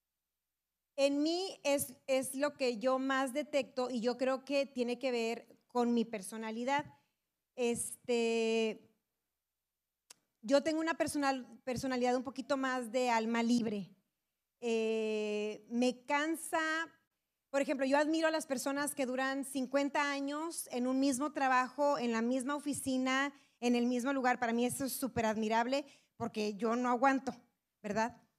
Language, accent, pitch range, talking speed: Spanish, Mexican, 235-285 Hz, 140 wpm